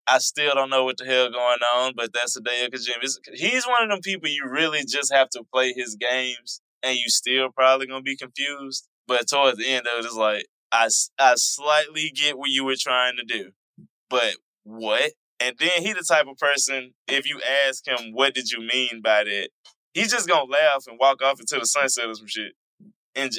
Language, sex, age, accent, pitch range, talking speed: English, male, 10-29, American, 115-140 Hz, 225 wpm